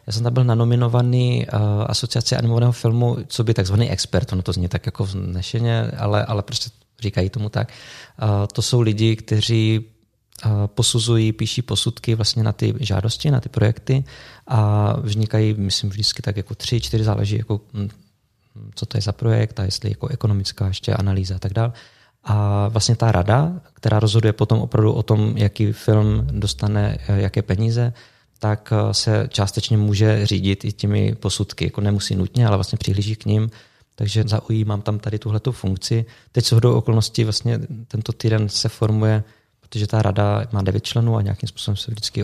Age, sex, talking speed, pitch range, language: 20-39, male, 170 wpm, 105-115 Hz, Czech